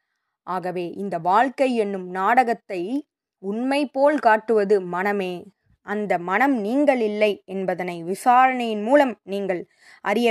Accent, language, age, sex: native, Tamil, 20-39, female